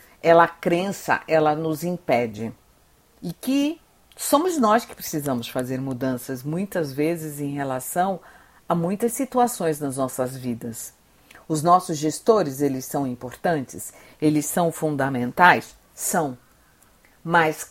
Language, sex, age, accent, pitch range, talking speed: Portuguese, female, 50-69, Brazilian, 140-180 Hz, 115 wpm